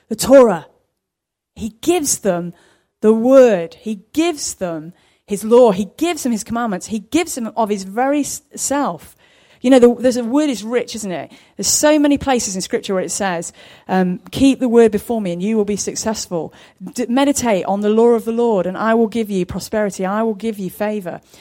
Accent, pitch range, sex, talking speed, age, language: British, 185-240 Hz, female, 200 wpm, 30-49, English